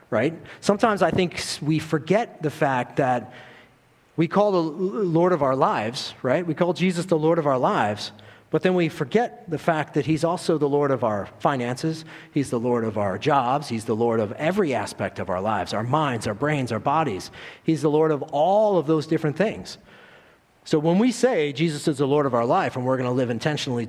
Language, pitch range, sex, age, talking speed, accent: English, 120-165 Hz, male, 40-59, 215 wpm, American